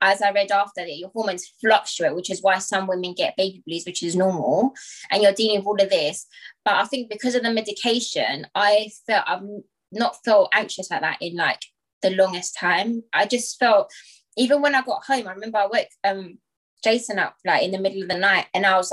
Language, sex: English, female